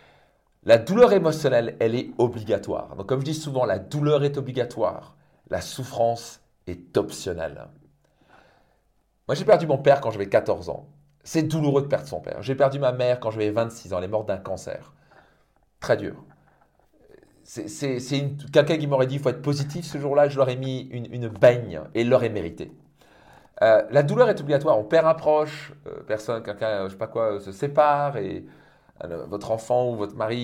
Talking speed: 200 wpm